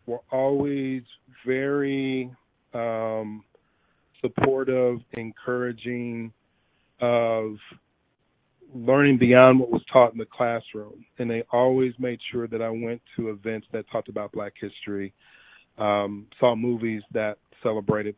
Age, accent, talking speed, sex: 40-59, American, 115 wpm, male